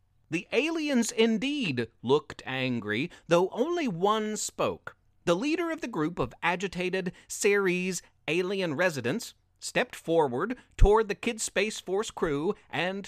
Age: 40-59